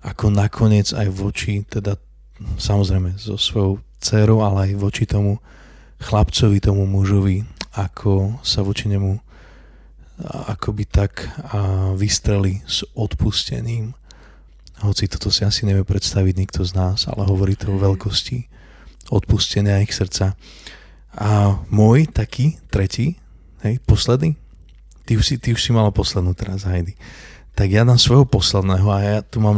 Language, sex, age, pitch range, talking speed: Slovak, male, 20-39, 95-110 Hz, 135 wpm